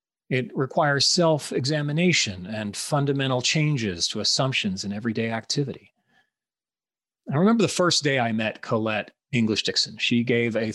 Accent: American